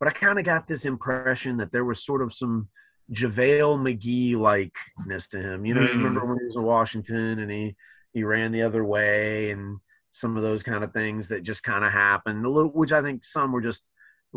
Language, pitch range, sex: English, 100-125 Hz, male